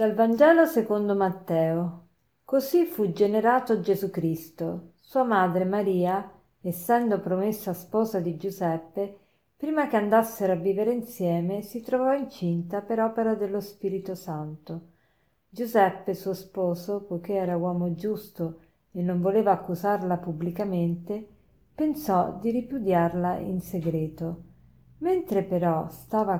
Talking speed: 115 wpm